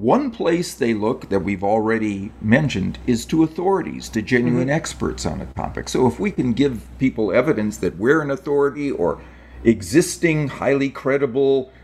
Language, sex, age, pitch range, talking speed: English, male, 50-69, 90-150 Hz, 160 wpm